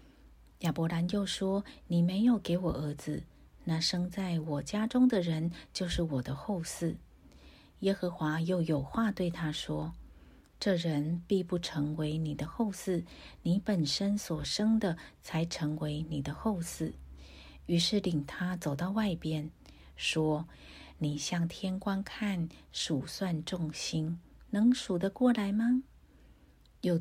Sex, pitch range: female, 155-195 Hz